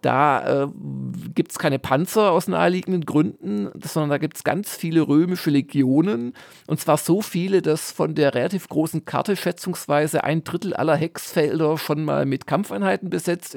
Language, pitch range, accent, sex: German, 130-170 Hz, German, male